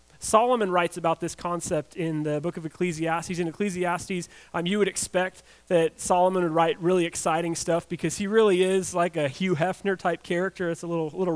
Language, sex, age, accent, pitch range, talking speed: English, male, 30-49, American, 160-205 Hz, 195 wpm